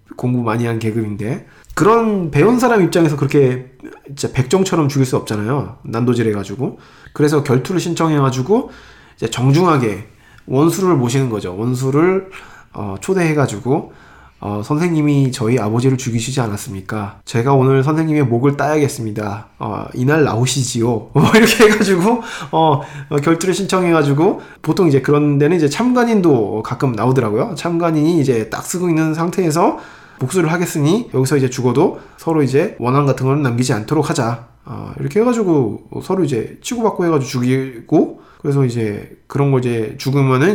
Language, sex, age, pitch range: Korean, male, 20-39, 120-165 Hz